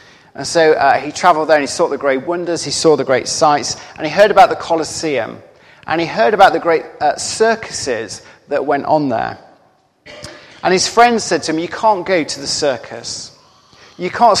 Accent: British